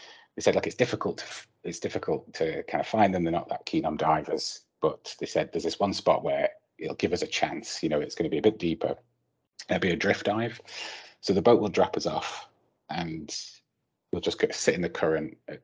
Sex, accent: male, British